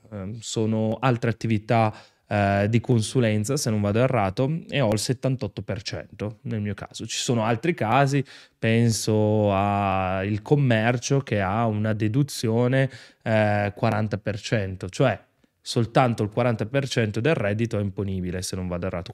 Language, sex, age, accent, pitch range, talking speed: Italian, male, 20-39, native, 105-130 Hz, 130 wpm